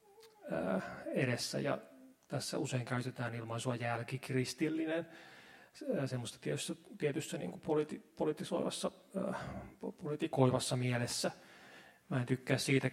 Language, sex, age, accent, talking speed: Finnish, male, 30-49, native, 85 wpm